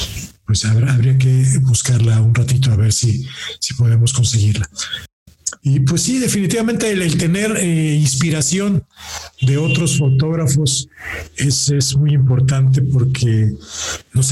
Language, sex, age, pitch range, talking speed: Spanish, male, 50-69, 125-145 Hz, 125 wpm